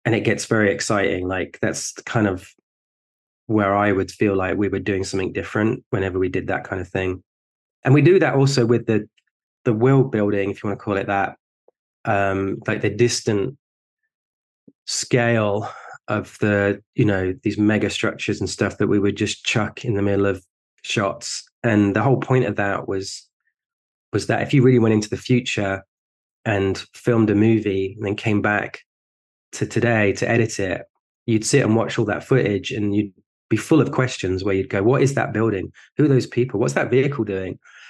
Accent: British